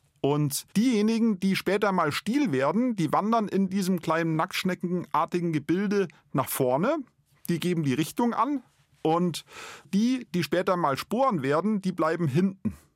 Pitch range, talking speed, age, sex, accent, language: 155-215 Hz, 145 wpm, 40-59, male, German, German